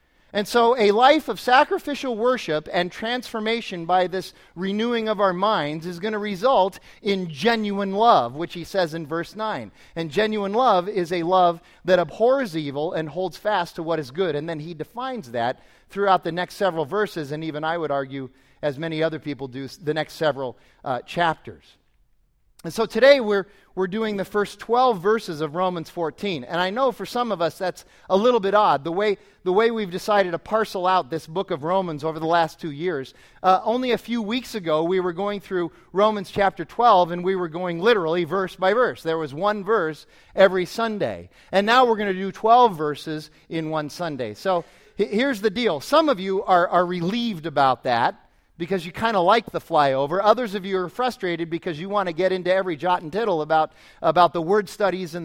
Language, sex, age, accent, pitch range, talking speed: English, male, 40-59, American, 165-215 Hz, 205 wpm